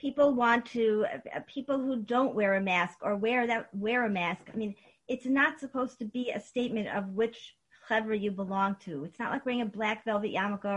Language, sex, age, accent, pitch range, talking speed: English, female, 50-69, American, 210-265 Hz, 215 wpm